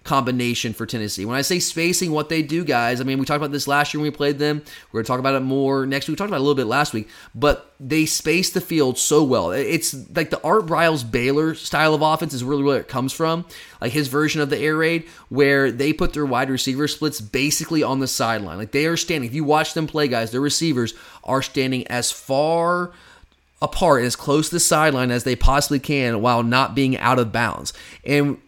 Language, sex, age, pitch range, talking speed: English, male, 20-39, 130-155 Hz, 240 wpm